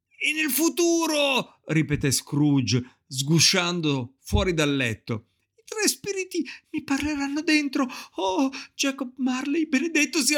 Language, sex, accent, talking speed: Italian, male, native, 115 wpm